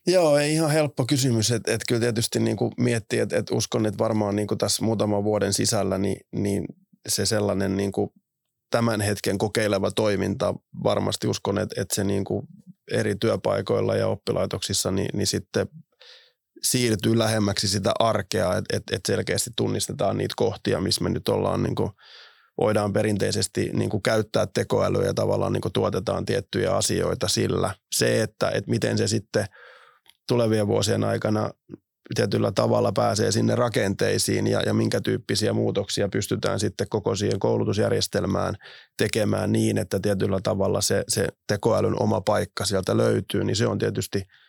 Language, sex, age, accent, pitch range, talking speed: Finnish, male, 20-39, native, 100-120 Hz, 150 wpm